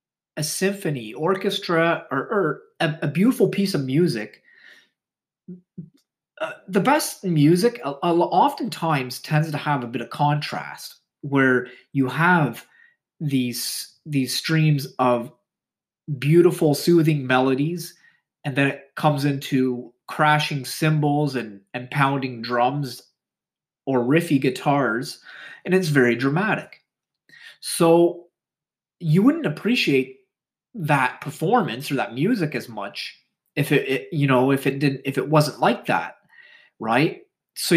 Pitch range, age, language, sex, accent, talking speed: 135-175 Hz, 30-49, English, male, American, 125 wpm